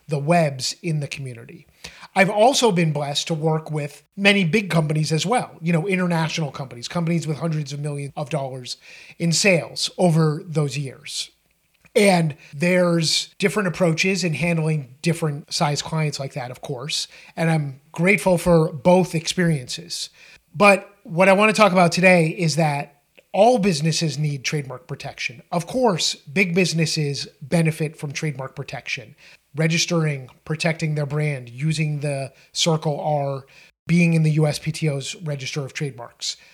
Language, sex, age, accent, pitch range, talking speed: English, male, 30-49, American, 145-175 Hz, 150 wpm